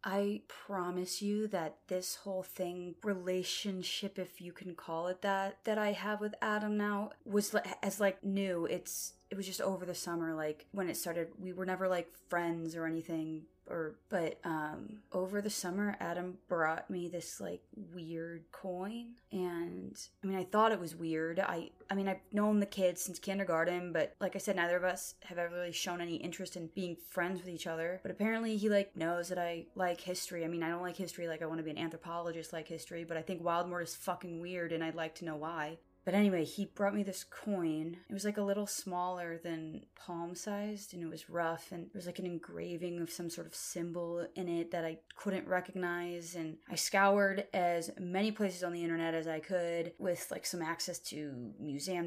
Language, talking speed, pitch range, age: English, 210 wpm, 165-190 Hz, 20-39